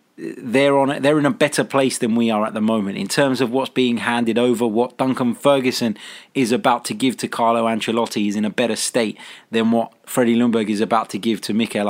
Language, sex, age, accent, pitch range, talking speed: English, male, 20-39, British, 115-140 Hz, 225 wpm